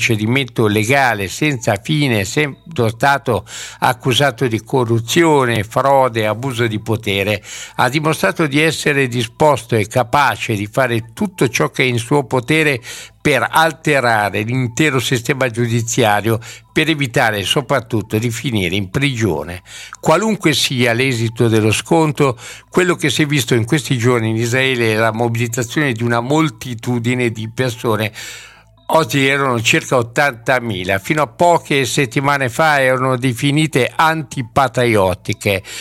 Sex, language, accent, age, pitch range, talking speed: male, Italian, native, 60-79, 115-150 Hz, 125 wpm